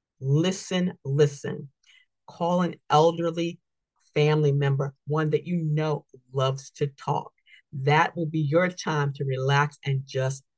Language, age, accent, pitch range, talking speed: English, 50-69, American, 145-190 Hz, 130 wpm